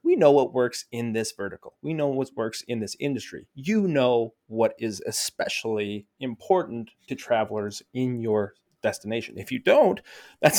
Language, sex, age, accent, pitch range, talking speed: English, male, 20-39, American, 110-140 Hz, 165 wpm